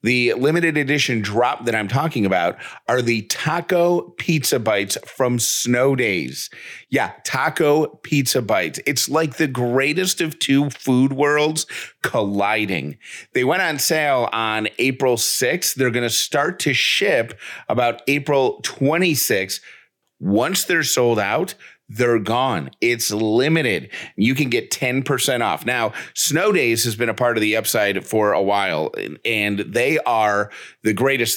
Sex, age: male, 30-49